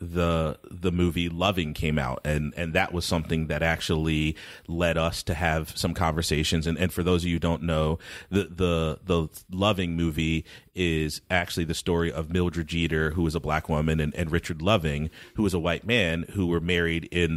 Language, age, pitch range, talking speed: English, 30-49, 80-95 Hz, 200 wpm